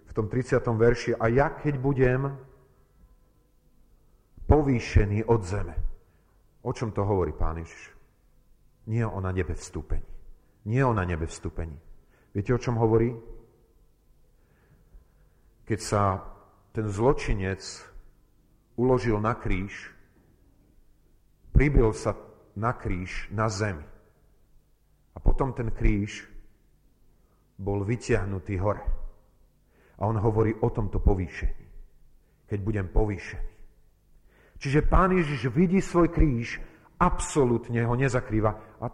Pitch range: 95-120 Hz